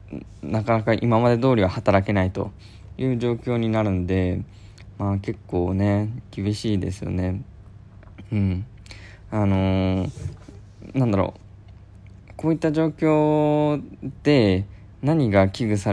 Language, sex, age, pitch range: Japanese, male, 20-39, 95-120 Hz